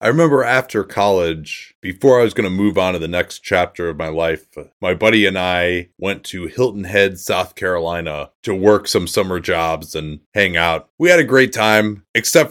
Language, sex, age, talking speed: English, male, 30-49, 200 wpm